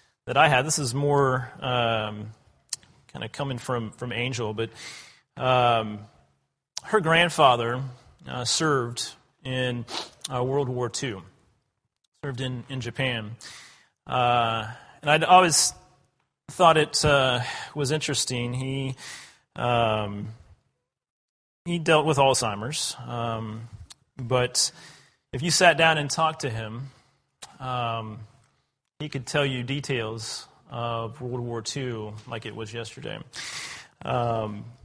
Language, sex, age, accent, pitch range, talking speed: English, male, 30-49, American, 120-145 Hz, 115 wpm